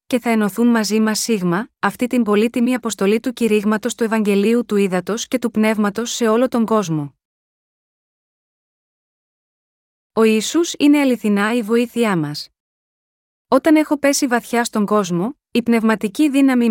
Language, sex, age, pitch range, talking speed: Greek, female, 20-39, 205-245 Hz, 140 wpm